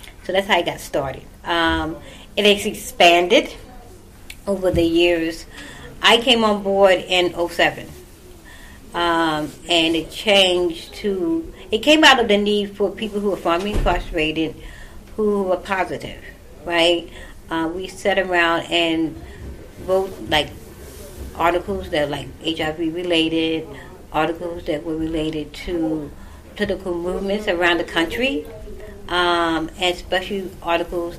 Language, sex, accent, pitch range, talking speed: English, female, American, 155-185 Hz, 130 wpm